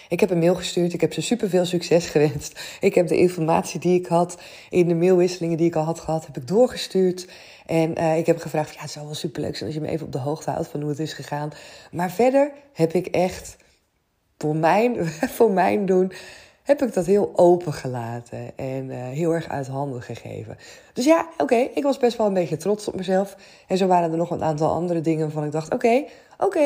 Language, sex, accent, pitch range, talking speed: Dutch, female, Dutch, 155-215 Hz, 235 wpm